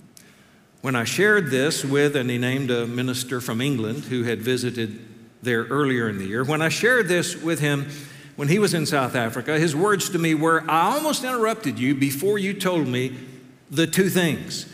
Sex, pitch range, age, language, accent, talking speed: male, 125-175 Hz, 50-69, English, American, 195 wpm